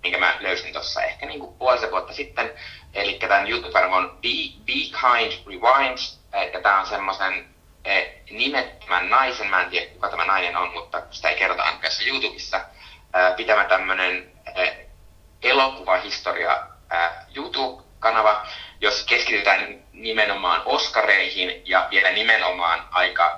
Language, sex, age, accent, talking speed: Finnish, male, 30-49, native, 120 wpm